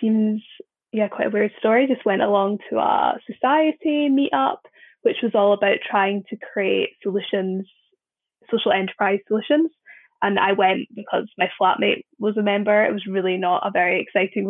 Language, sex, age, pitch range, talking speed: English, female, 10-29, 200-250 Hz, 165 wpm